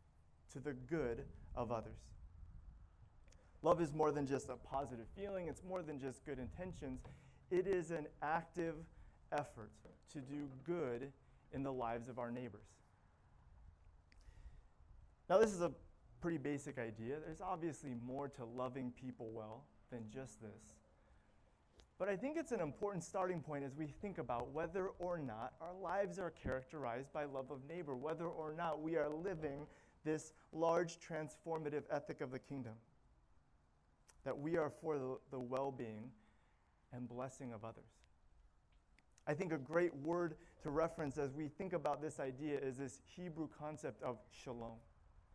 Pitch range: 115-165 Hz